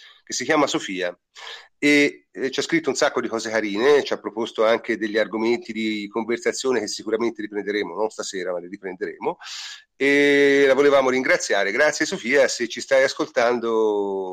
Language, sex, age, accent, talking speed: Italian, male, 40-59, native, 160 wpm